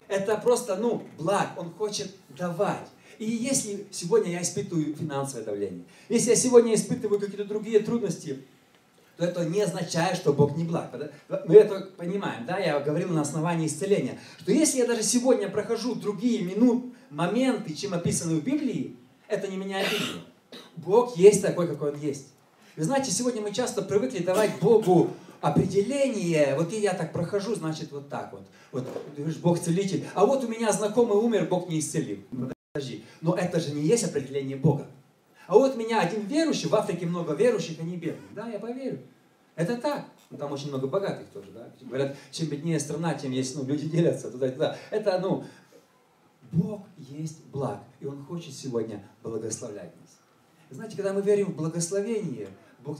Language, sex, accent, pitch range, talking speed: Russian, male, native, 150-210 Hz, 175 wpm